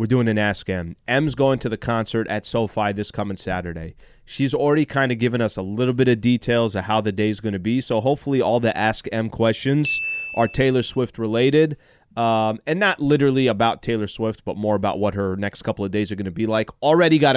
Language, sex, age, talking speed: English, male, 30-49, 235 wpm